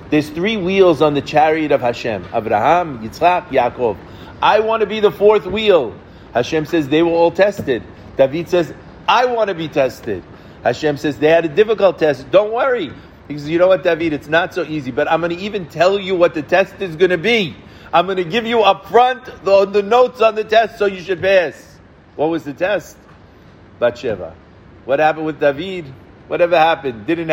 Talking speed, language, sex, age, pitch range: 205 wpm, English, male, 50-69, 145-190 Hz